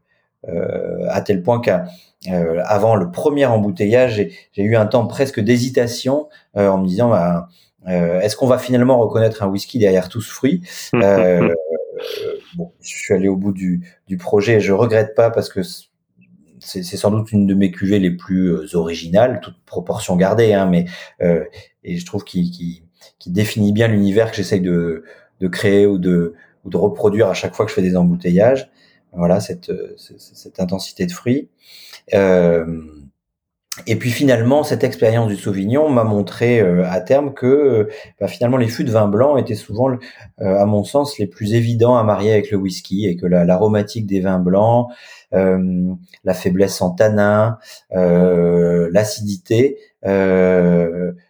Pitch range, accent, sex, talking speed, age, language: 90-120 Hz, French, male, 175 wpm, 40-59, French